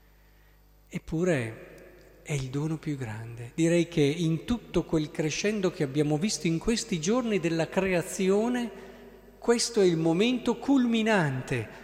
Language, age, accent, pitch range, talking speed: Italian, 50-69, native, 135-190 Hz, 125 wpm